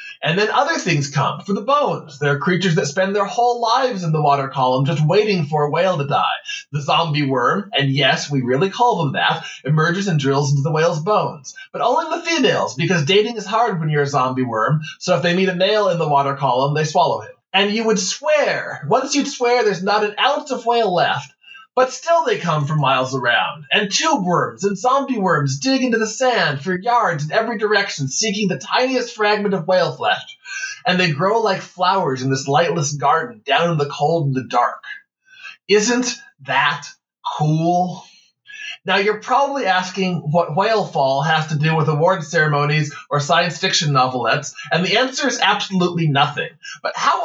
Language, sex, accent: English, male, American